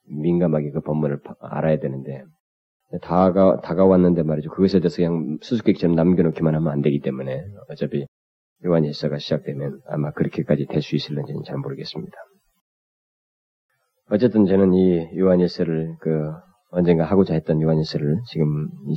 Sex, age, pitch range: male, 40-59, 75-95 Hz